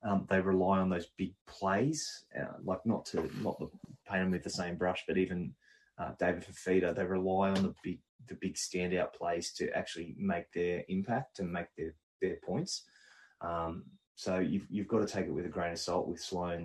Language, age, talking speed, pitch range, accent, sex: English, 20-39, 210 wpm, 85-95 Hz, Australian, male